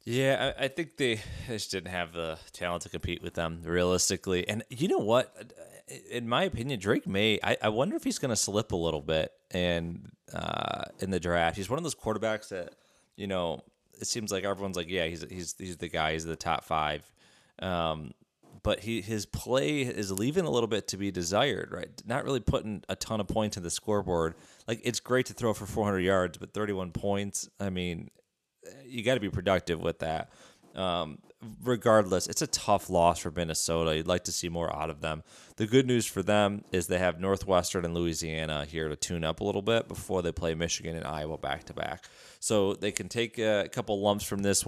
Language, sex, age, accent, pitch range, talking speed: English, male, 20-39, American, 85-105 Hz, 210 wpm